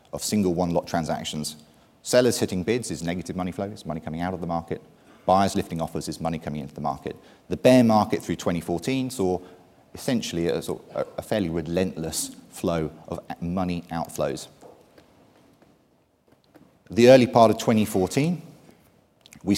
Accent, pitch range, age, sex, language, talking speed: British, 80-100 Hz, 30-49, male, English, 150 wpm